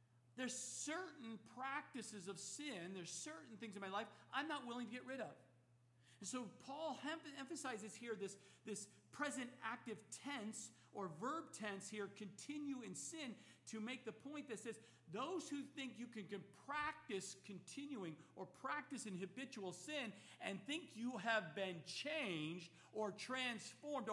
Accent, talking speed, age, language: American, 155 wpm, 50-69, English